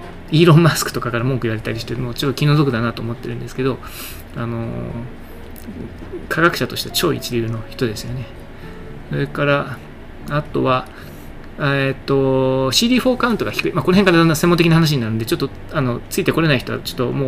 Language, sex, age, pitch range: Japanese, male, 20-39, 115-155 Hz